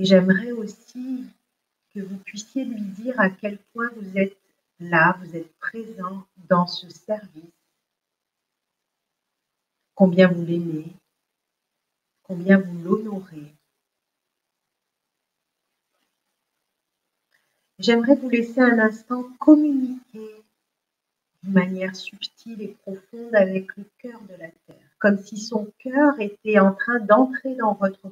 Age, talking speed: 50-69, 115 wpm